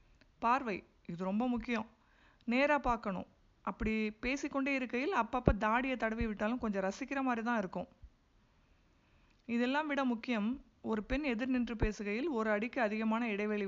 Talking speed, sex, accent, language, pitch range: 125 wpm, female, native, Tamil, 200-250 Hz